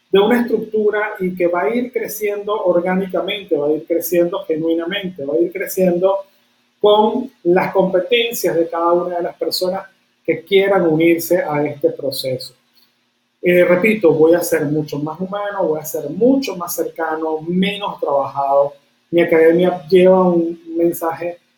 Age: 30-49